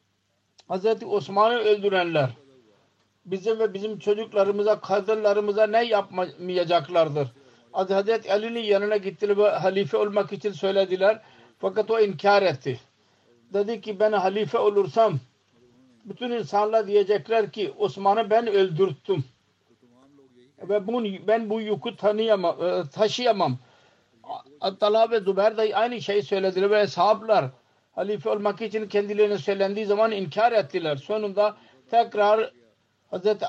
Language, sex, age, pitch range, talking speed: Turkish, male, 50-69, 145-215 Hz, 105 wpm